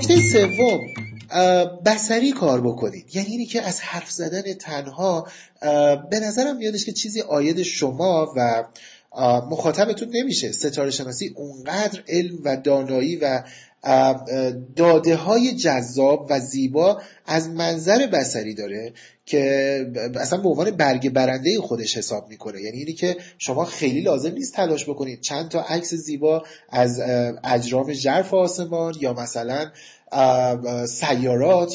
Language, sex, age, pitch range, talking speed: Persian, male, 30-49, 130-190 Hz, 125 wpm